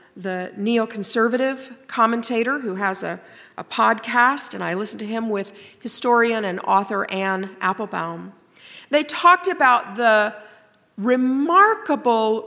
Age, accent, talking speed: 50-69, American, 115 wpm